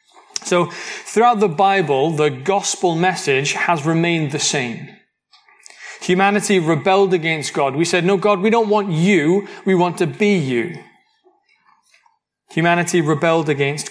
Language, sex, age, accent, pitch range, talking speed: English, male, 30-49, British, 160-205 Hz, 135 wpm